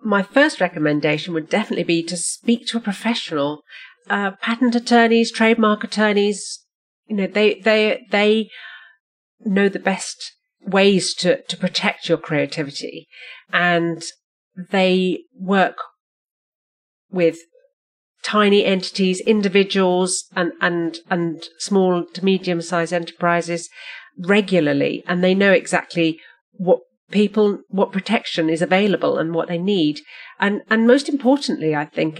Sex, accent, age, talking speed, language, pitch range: female, British, 40-59, 125 wpm, English, 175-225 Hz